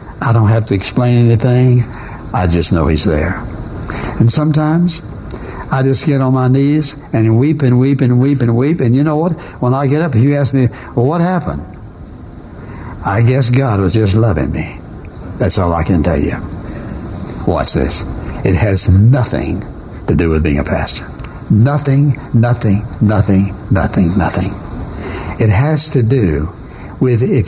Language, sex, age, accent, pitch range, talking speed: English, male, 60-79, American, 105-135 Hz, 175 wpm